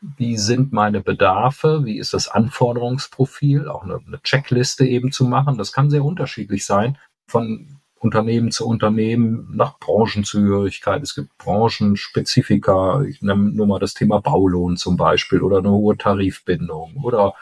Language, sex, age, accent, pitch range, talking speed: German, male, 40-59, German, 105-135 Hz, 150 wpm